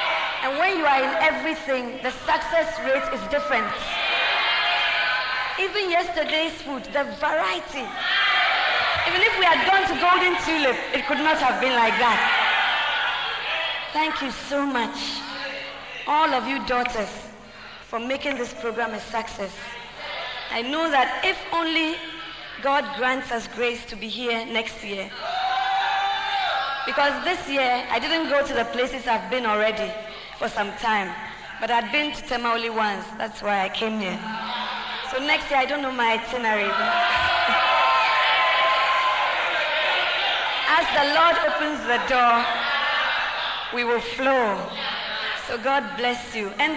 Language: English